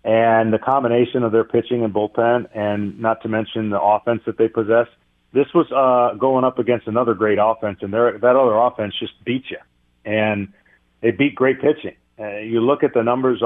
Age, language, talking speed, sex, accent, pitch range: 40-59, English, 195 wpm, male, American, 105-130 Hz